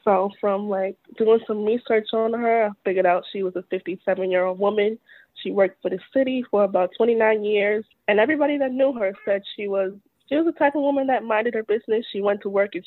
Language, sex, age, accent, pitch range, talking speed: English, female, 20-39, American, 180-215 Hz, 220 wpm